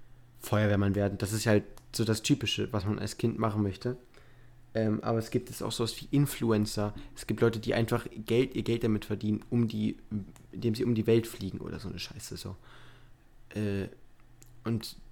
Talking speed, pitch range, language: 195 wpm, 110-125 Hz, German